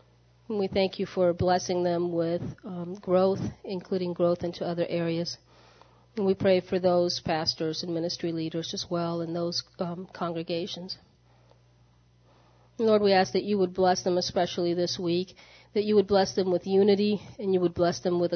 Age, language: 40-59, English